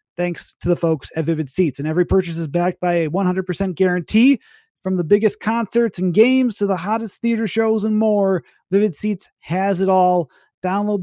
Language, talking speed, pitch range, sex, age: English, 190 wpm, 175-210 Hz, male, 30-49